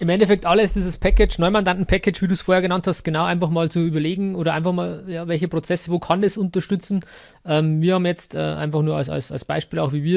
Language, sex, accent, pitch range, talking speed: German, male, German, 150-180 Hz, 235 wpm